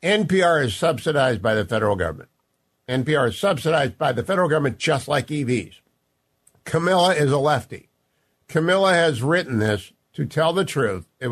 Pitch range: 115-165 Hz